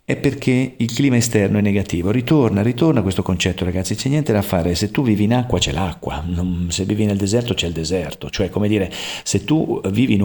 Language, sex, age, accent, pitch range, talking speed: Italian, male, 50-69, native, 85-105 Hz, 220 wpm